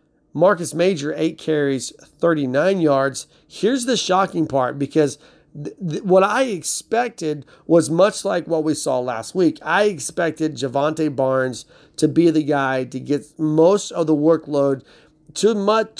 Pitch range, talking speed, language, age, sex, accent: 150-180 Hz, 140 wpm, English, 40-59, male, American